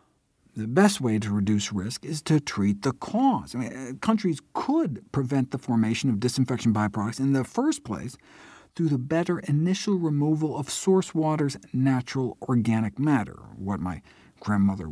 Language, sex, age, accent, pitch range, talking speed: English, male, 50-69, American, 115-165 Hz, 150 wpm